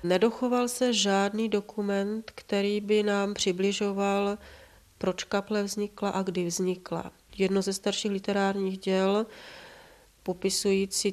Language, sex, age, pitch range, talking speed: Czech, female, 30-49, 195-215 Hz, 110 wpm